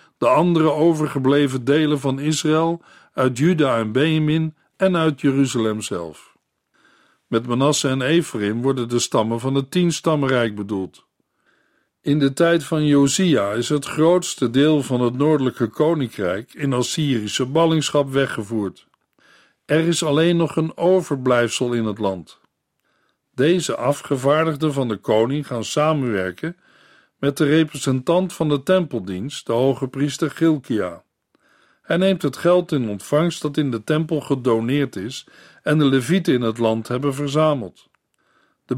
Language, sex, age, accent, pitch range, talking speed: Dutch, male, 50-69, Dutch, 125-160 Hz, 135 wpm